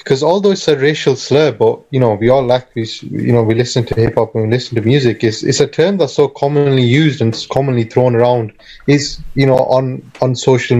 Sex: male